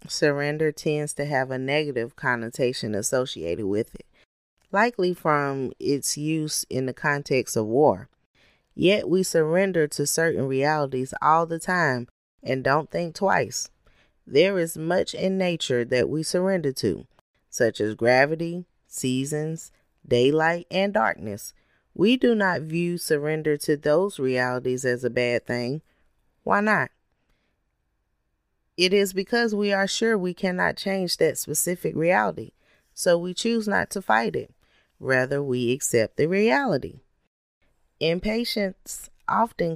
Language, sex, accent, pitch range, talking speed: English, female, American, 130-185 Hz, 135 wpm